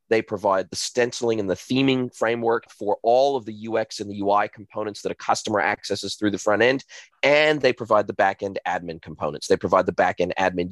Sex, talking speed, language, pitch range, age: male, 220 wpm, English, 100-120 Hz, 30-49